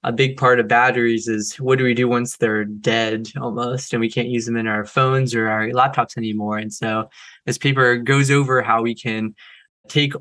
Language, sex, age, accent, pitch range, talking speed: English, male, 20-39, American, 115-130 Hz, 210 wpm